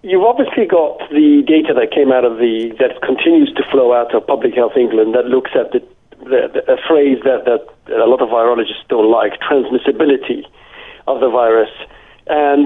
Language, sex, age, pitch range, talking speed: English, male, 50-69, 120-175 Hz, 190 wpm